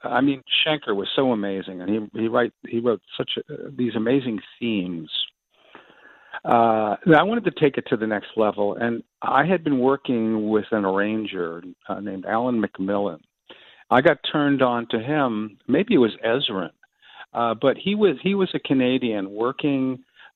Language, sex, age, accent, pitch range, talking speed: English, male, 50-69, American, 110-135 Hz, 170 wpm